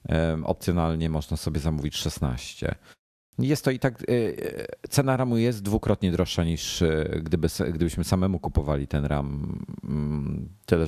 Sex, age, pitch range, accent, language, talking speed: male, 40-59, 75-95 Hz, native, Polish, 120 wpm